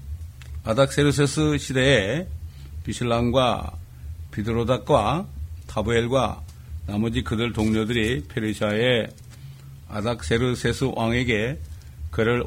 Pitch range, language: 80-120 Hz, Korean